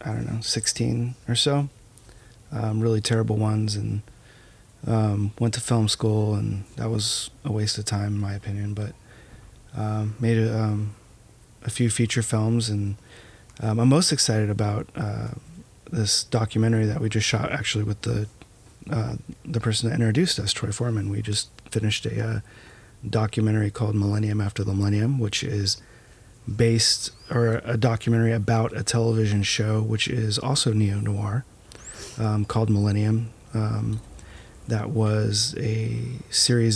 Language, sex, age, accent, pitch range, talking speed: English, male, 30-49, American, 105-115 Hz, 150 wpm